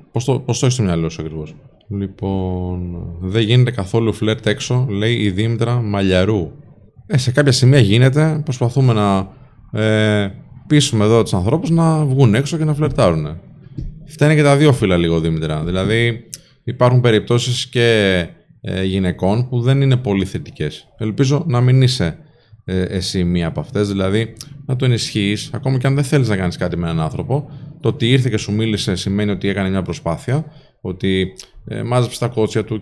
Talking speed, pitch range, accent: 175 wpm, 100-140 Hz, native